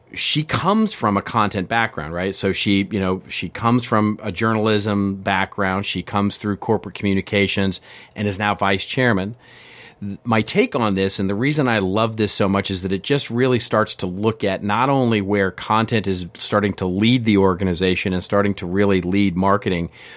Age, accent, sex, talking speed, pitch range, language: 40-59, American, male, 190 wpm, 95-115 Hz, English